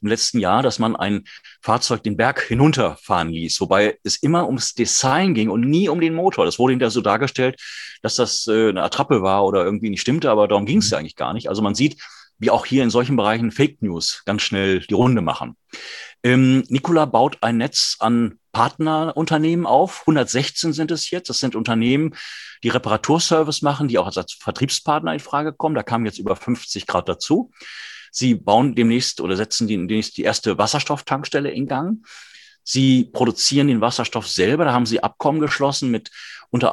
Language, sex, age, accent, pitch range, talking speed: German, male, 40-59, German, 110-150 Hz, 185 wpm